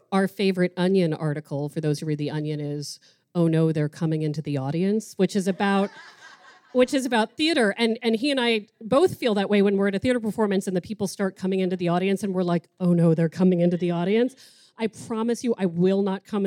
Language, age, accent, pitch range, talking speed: English, 40-59, American, 165-215 Hz, 235 wpm